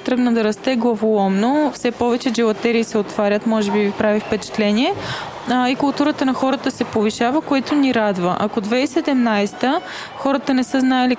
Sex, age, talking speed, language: female, 20-39, 165 wpm, Bulgarian